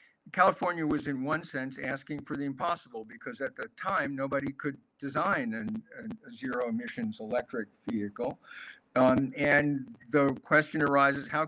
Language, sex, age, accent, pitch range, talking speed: English, male, 50-69, American, 135-170 Hz, 145 wpm